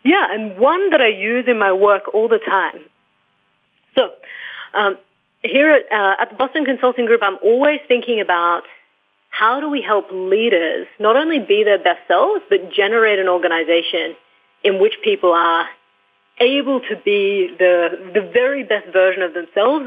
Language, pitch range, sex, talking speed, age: English, 180-275 Hz, female, 165 wpm, 30-49